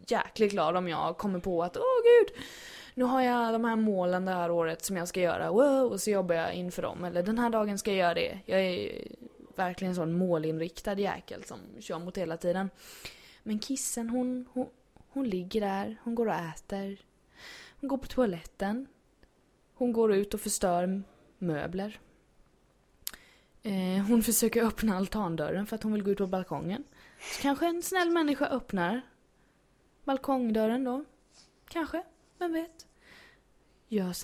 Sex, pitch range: female, 185-260 Hz